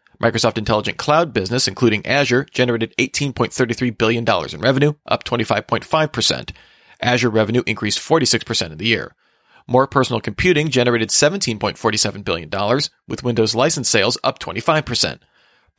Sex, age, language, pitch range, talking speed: male, 40-59, English, 115-140 Hz, 120 wpm